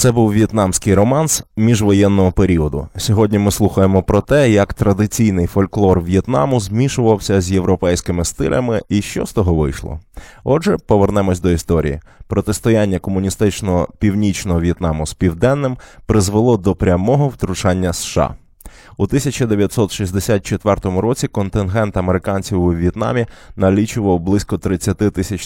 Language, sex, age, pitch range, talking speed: Ukrainian, male, 20-39, 90-110 Hz, 115 wpm